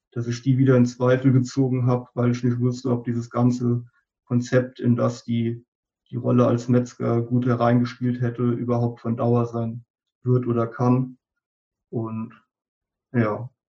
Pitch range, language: 120-135 Hz, German